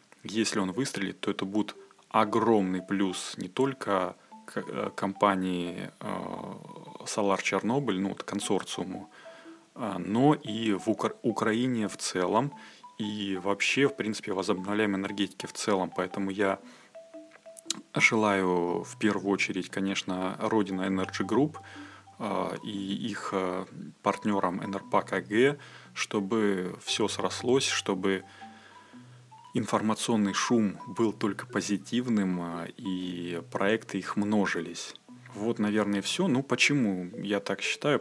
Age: 20-39